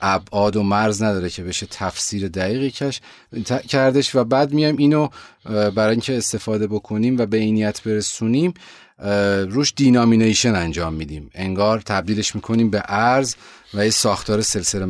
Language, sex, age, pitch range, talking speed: Persian, male, 30-49, 100-120 Hz, 140 wpm